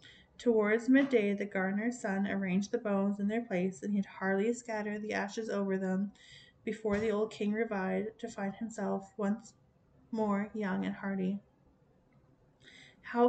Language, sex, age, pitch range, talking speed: English, female, 20-39, 195-225 Hz, 155 wpm